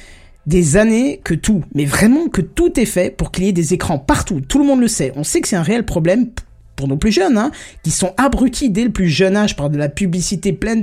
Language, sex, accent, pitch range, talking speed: French, male, French, 160-220 Hz, 260 wpm